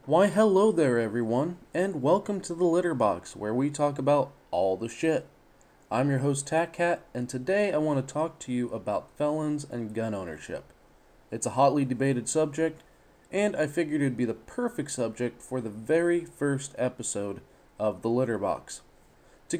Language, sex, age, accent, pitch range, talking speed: English, male, 20-39, American, 125-165 Hz, 175 wpm